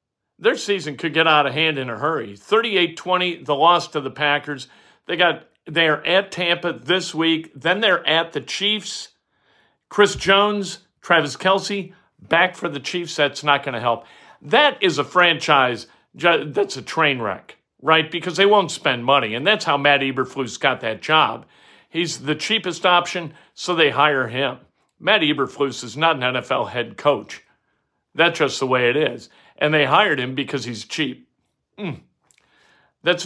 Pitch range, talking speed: 140-175 Hz, 170 wpm